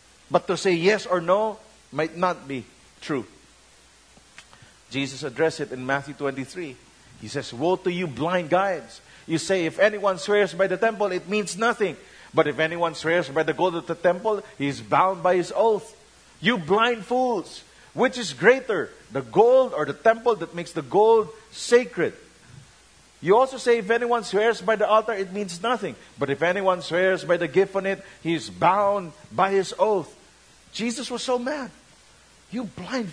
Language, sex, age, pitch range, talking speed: English, male, 50-69, 165-230 Hz, 180 wpm